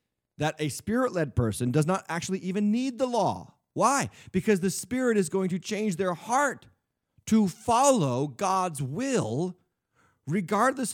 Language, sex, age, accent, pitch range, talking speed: English, male, 40-59, American, 135-205 Hz, 145 wpm